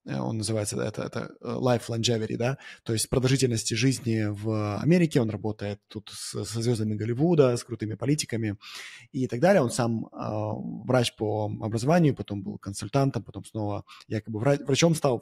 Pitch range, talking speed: 115-145 Hz, 160 wpm